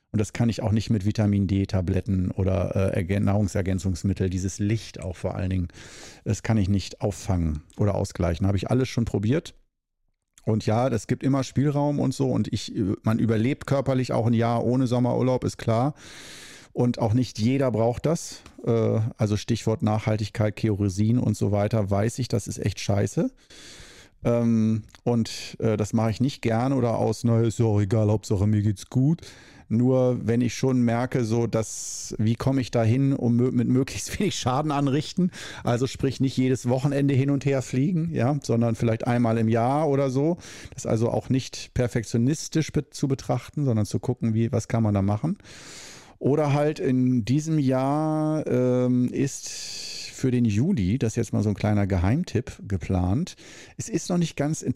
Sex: male